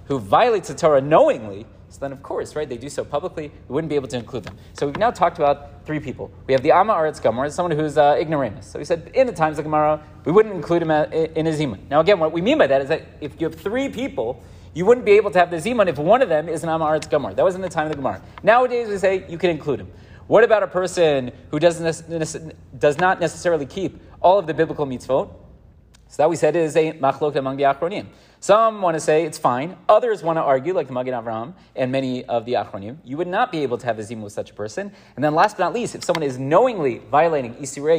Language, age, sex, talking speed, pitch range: English, 40-59, male, 270 wpm, 135-190 Hz